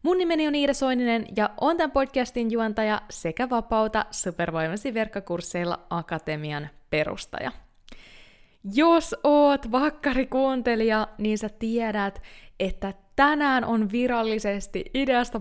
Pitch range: 180-240 Hz